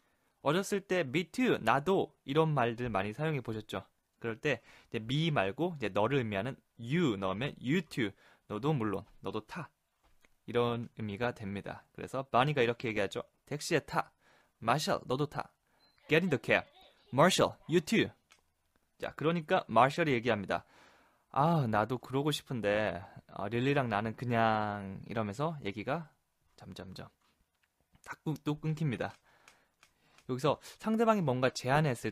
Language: Korean